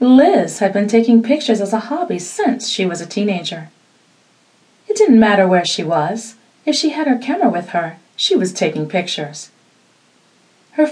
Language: English